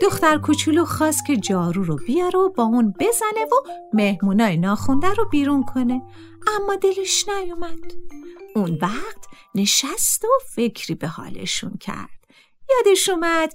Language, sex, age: Persian, female, 50-69